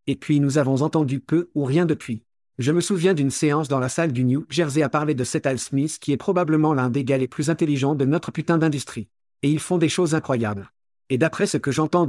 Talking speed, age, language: 250 wpm, 50-69, French